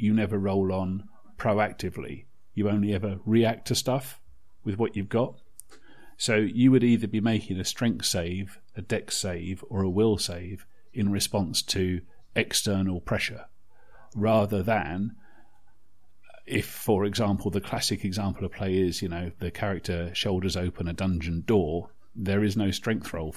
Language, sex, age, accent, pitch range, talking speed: English, male, 40-59, British, 95-115 Hz, 155 wpm